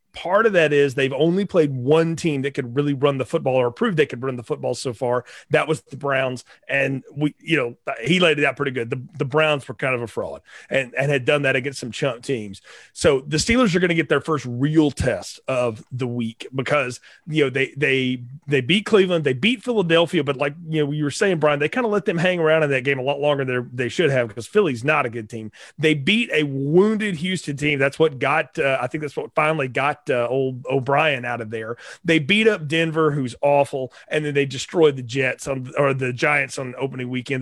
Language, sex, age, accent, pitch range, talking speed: English, male, 30-49, American, 135-165 Hz, 240 wpm